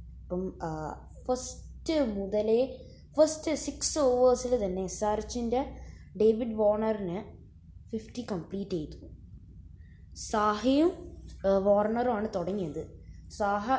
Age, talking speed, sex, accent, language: 20-39, 70 wpm, female, native, Malayalam